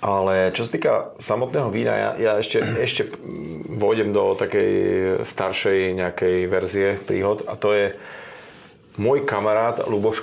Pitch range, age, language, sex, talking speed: 95-160 Hz, 30-49, Slovak, male, 135 wpm